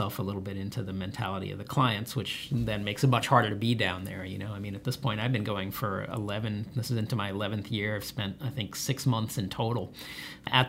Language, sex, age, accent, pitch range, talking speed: English, male, 40-59, American, 105-130 Hz, 260 wpm